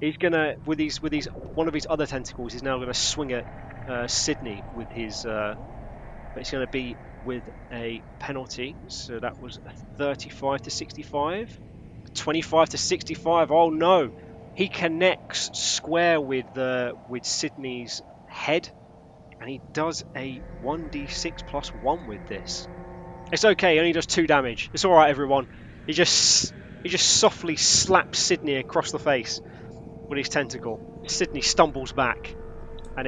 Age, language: 20-39, English